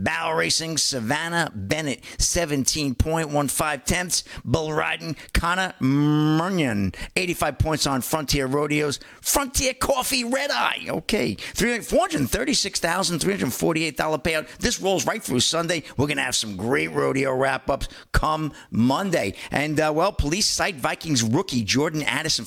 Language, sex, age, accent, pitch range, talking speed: English, male, 50-69, American, 120-155 Hz, 125 wpm